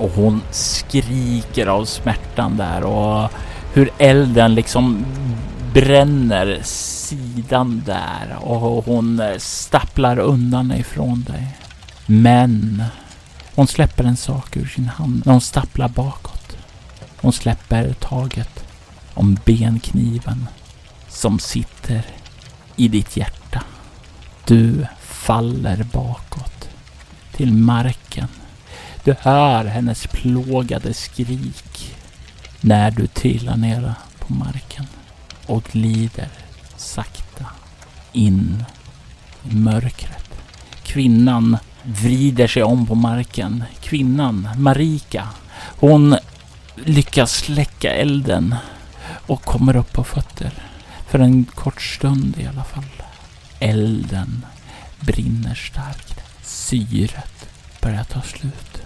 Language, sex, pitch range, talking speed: Swedish, male, 100-125 Hz, 95 wpm